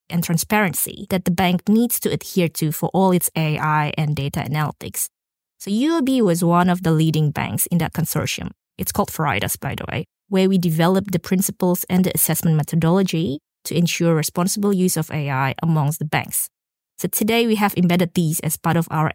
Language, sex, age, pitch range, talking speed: English, female, 20-39, 160-200 Hz, 190 wpm